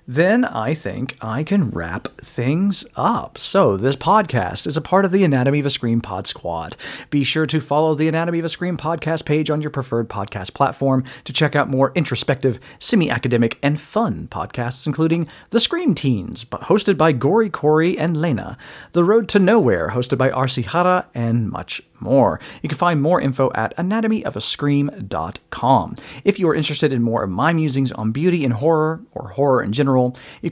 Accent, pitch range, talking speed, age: American, 115-155 Hz, 185 wpm, 40-59